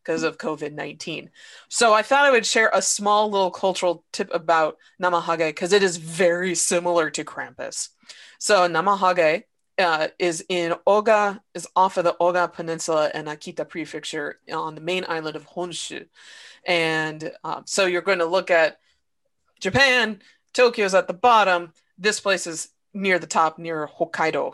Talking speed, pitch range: 165 wpm, 165-205 Hz